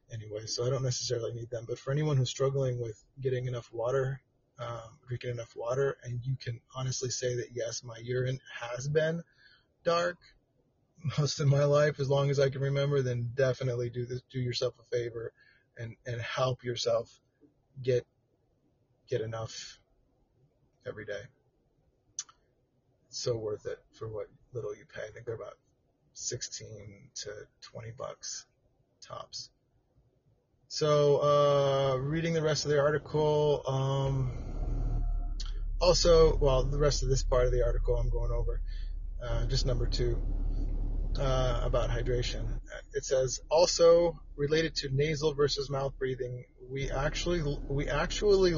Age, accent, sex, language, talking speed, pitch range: 30-49, American, male, English, 145 wpm, 120-145 Hz